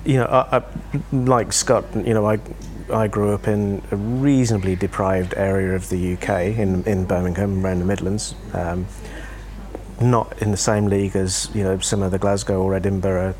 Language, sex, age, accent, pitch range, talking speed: English, male, 40-59, British, 95-120 Hz, 185 wpm